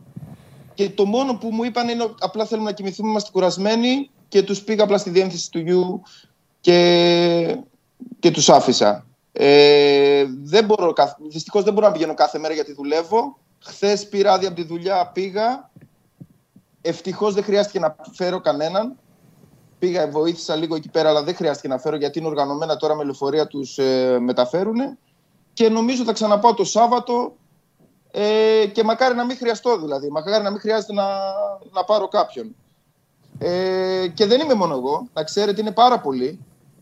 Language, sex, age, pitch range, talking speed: Greek, male, 30-49, 155-215 Hz, 155 wpm